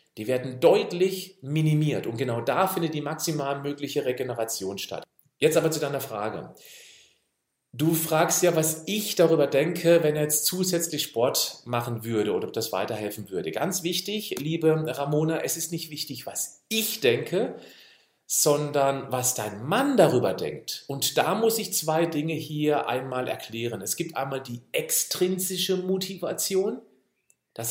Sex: male